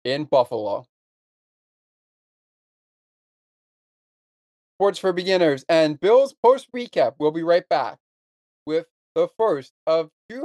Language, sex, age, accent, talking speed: English, male, 40-59, American, 105 wpm